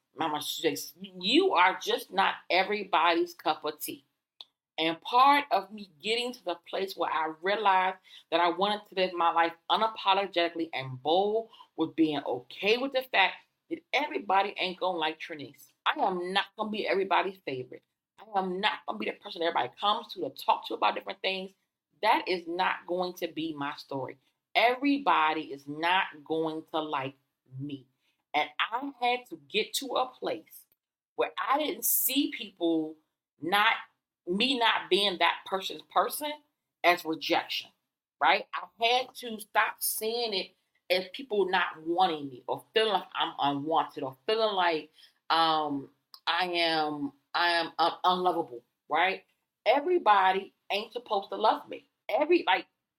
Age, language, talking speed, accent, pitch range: 30-49, English, 160 wpm, American, 165-225 Hz